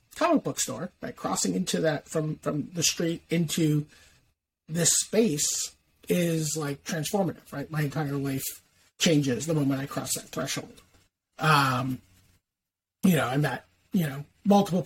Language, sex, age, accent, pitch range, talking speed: English, male, 30-49, American, 130-190 Hz, 145 wpm